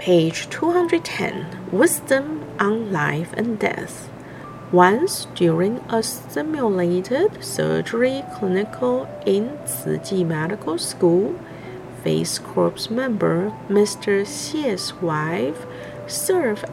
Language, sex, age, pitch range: Chinese, female, 50-69, 165-225 Hz